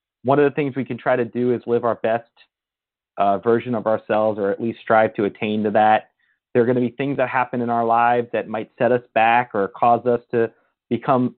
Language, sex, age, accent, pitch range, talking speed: English, male, 30-49, American, 110-130 Hz, 245 wpm